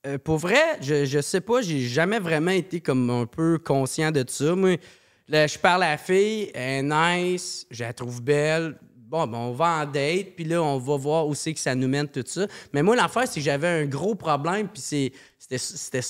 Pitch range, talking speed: 140-190 Hz, 240 wpm